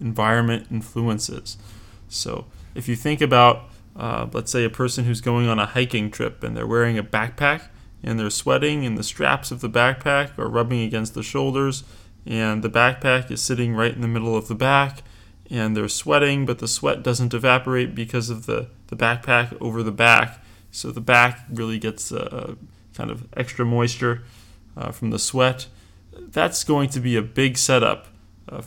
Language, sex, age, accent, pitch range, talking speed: English, male, 20-39, American, 110-125 Hz, 185 wpm